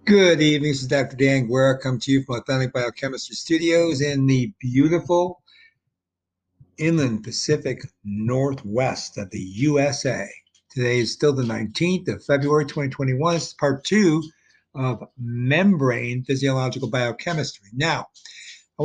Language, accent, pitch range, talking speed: English, American, 120-150 Hz, 130 wpm